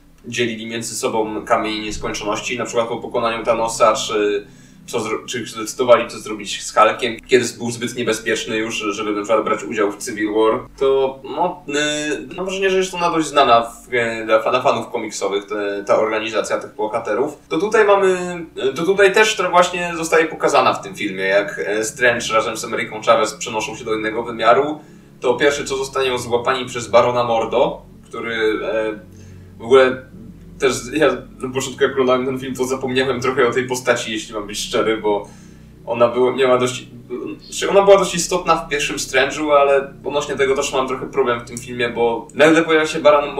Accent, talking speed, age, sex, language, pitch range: native, 180 wpm, 20-39, male, Polish, 120-150 Hz